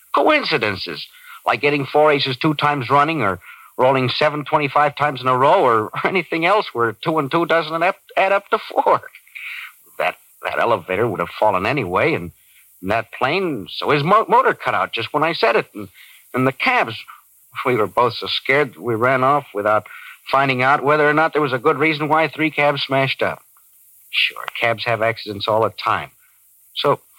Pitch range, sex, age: 115-155 Hz, male, 60-79